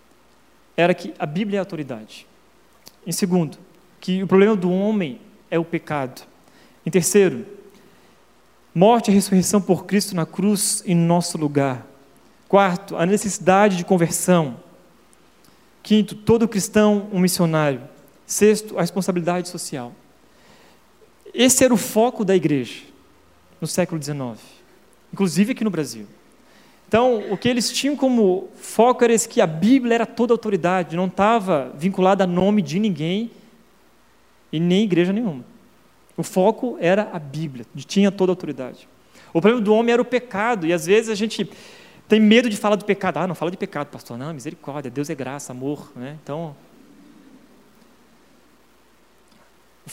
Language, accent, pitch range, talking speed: Portuguese, Brazilian, 170-215 Hz, 150 wpm